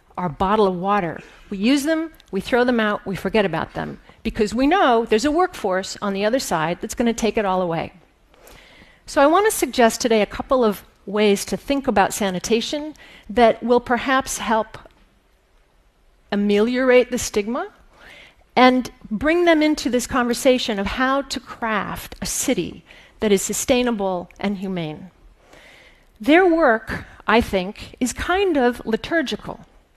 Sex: female